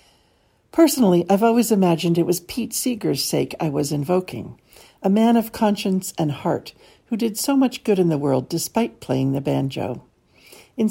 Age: 60-79